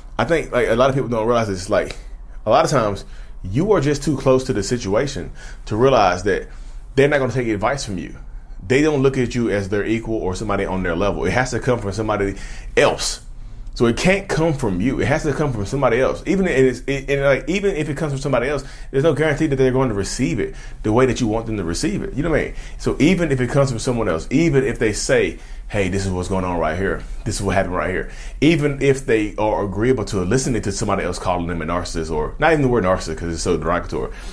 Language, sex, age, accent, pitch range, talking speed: English, male, 30-49, American, 100-145 Hz, 265 wpm